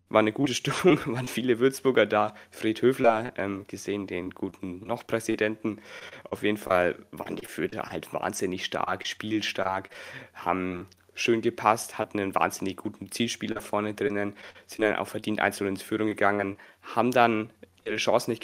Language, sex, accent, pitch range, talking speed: German, male, German, 100-115 Hz, 155 wpm